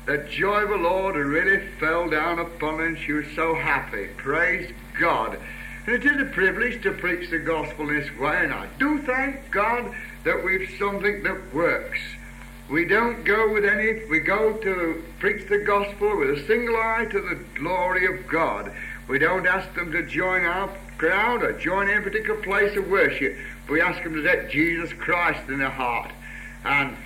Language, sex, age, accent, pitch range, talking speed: English, male, 60-79, British, 175-235 Hz, 190 wpm